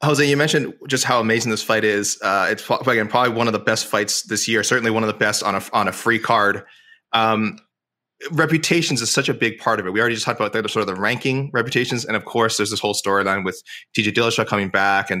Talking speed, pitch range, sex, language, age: 255 wpm, 110-140 Hz, male, English, 20-39